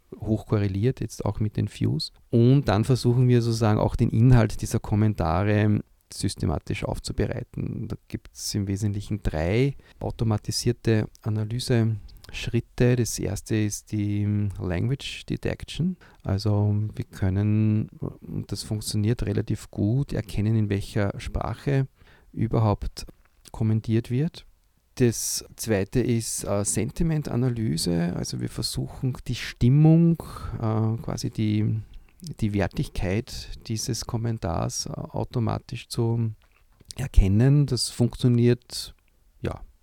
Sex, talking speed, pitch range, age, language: male, 105 wpm, 105-120 Hz, 40-59, German